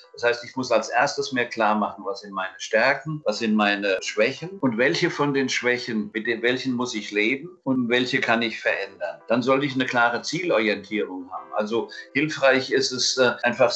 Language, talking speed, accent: German, 190 wpm, German